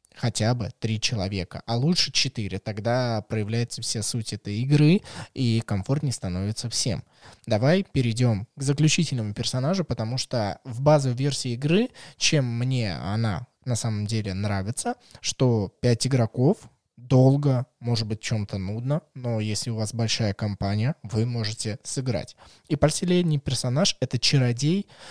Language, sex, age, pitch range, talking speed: Russian, male, 20-39, 110-145 Hz, 140 wpm